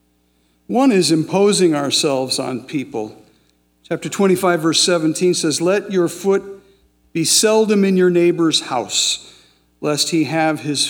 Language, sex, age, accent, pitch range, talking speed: English, male, 50-69, American, 135-180 Hz, 130 wpm